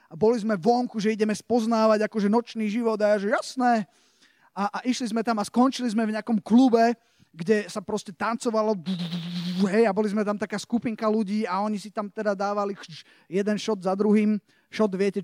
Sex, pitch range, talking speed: male, 195-230 Hz, 195 wpm